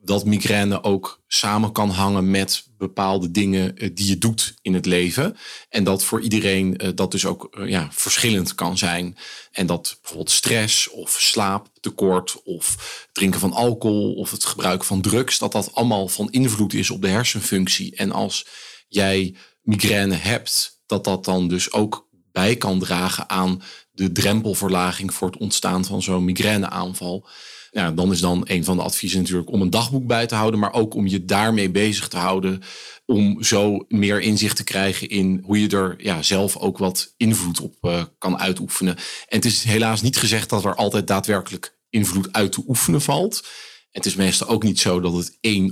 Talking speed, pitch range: 180 wpm, 95-105 Hz